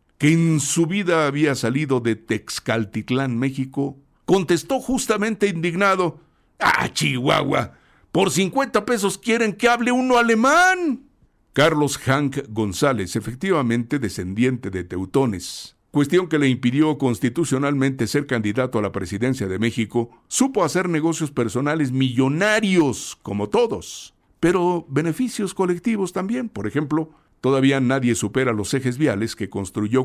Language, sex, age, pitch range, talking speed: Spanish, male, 60-79, 110-165 Hz, 125 wpm